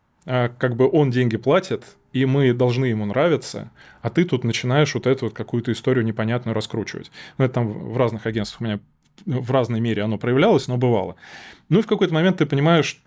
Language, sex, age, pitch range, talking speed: Russian, male, 20-39, 120-145 Hz, 200 wpm